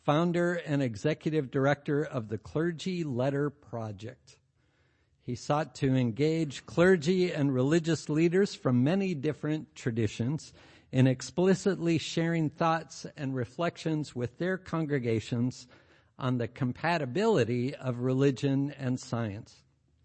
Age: 60-79